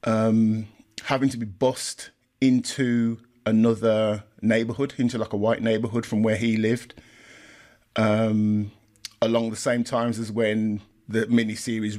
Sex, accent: male, British